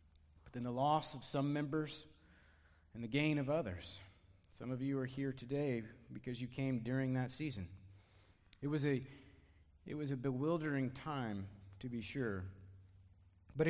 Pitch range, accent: 100-160 Hz, American